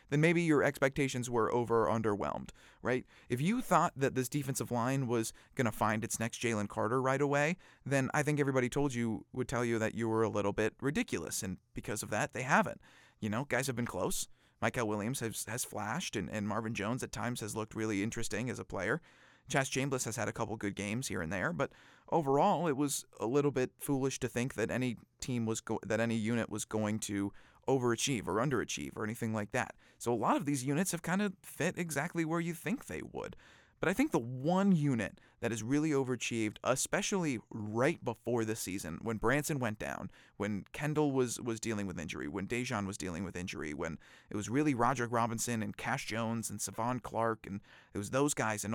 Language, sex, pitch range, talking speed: English, male, 110-140 Hz, 215 wpm